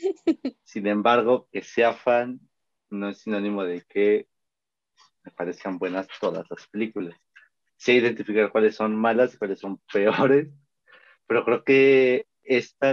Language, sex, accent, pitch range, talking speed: Spanish, male, Mexican, 100-120 Hz, 140 wpm